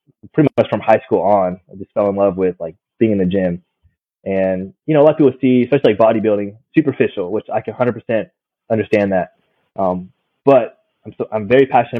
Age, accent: 20-39, American